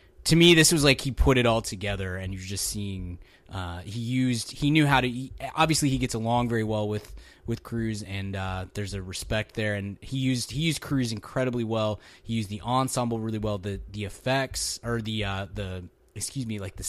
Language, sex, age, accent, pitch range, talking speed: English, male, 20-39, American, 100-125 Hz, 220 wpm